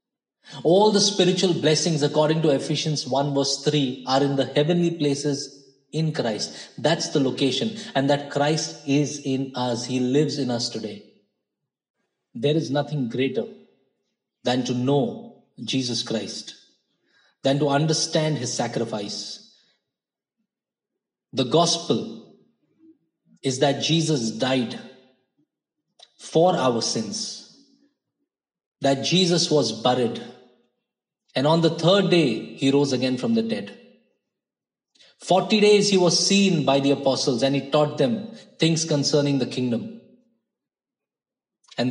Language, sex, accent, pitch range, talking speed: Hindi, male, native, 135-170 Hz, 125 wpm